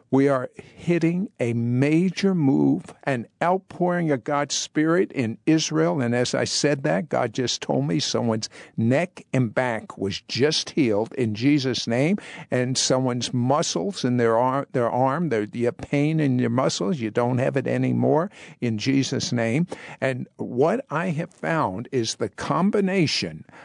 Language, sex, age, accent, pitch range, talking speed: English, male, 60-79, American, 120-160 Hz, 155 wpm